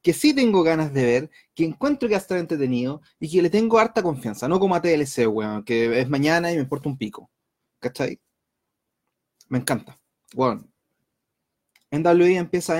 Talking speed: 170 wpm